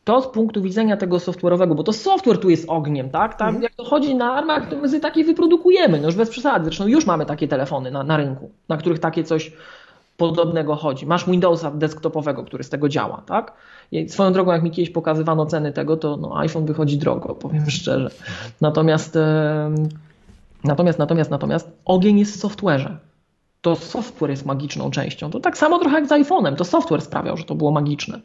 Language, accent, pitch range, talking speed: Polish, native, 160-205 Hz, 200 wpm